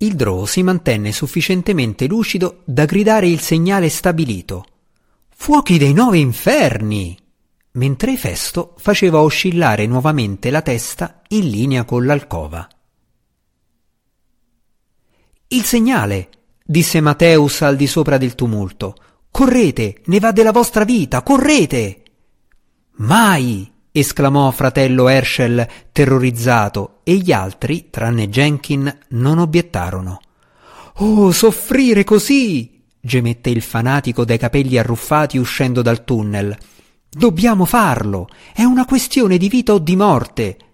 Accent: native